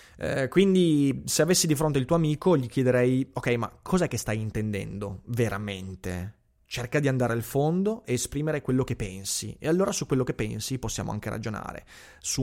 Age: 30-49